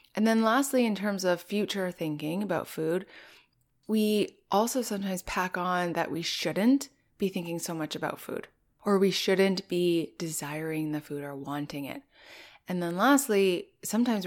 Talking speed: 160 wpm